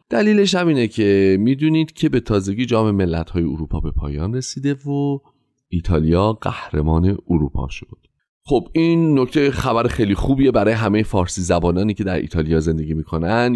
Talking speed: 145 wpm